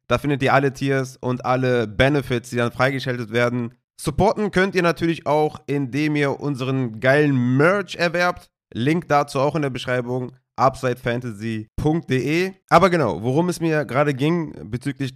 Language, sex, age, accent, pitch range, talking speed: German, male, 30-49, German, 120-150 Hz, 150 wpm